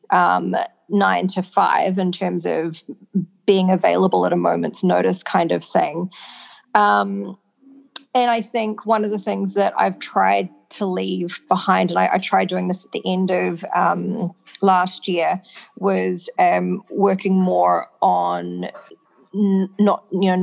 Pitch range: 120-200 Hz